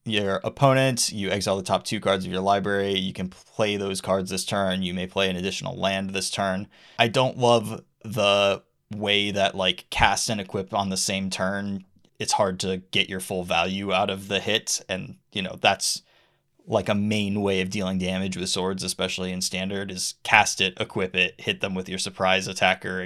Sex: male